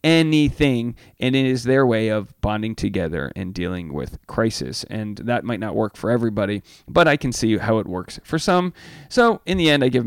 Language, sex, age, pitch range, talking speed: English, male, 30-49, 105-150 Hz, 210 wpm